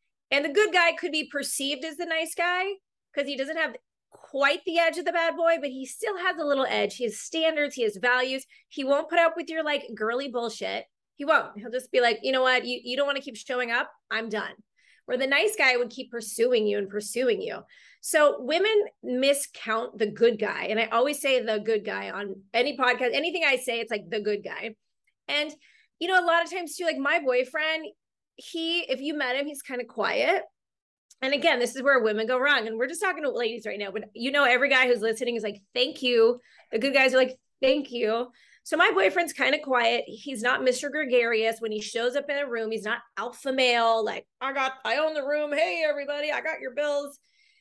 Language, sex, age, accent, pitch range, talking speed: English, female, 30-49, American, 235-310 Hz, 235 wpm